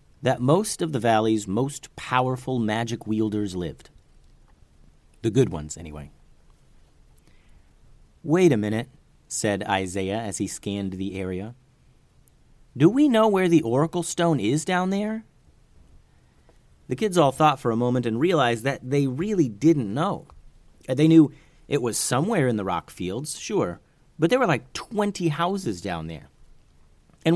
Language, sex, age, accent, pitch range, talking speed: English, male, 30-49, American, 110-165 Hz, 145 wpm